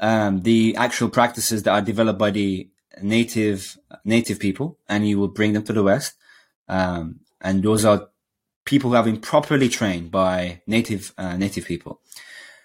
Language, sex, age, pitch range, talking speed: English, male, 20-39, 100-125 Hz, 165 wpm